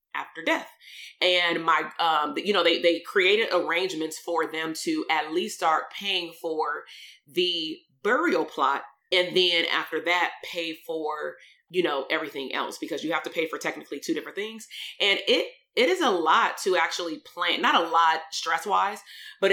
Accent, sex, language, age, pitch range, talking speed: American, female, English, 30-49, 160-210 Hz, 175 wpm